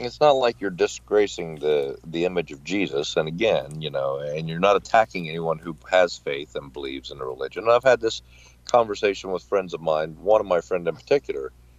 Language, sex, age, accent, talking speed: English, male, 50-69, American, 210 wpm